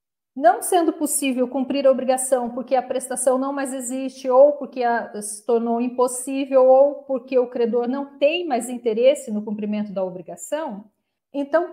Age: 50-69